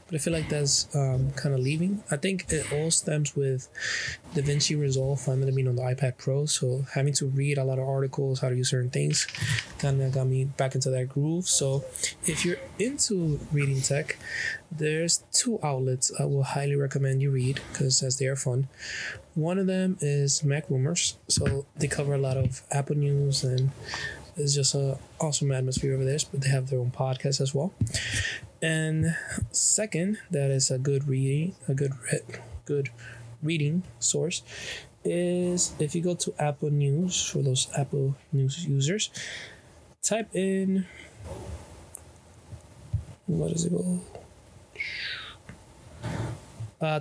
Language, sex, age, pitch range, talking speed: English, male, 20-39, 130-155 Hz, 160 wpm